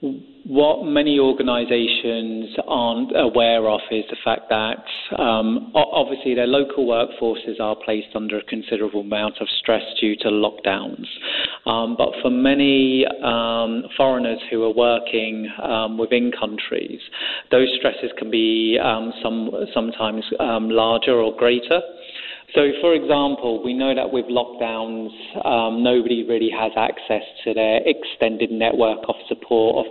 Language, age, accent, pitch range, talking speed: English, 40-59, British, 110-125 Hz, 135 wpm